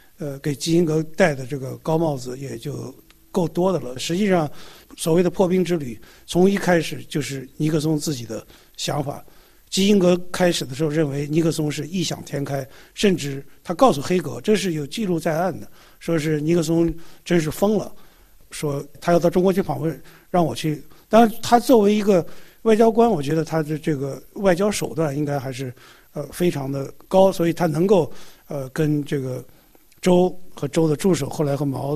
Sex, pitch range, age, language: male, 145-180 Hz, 50-69, Chinese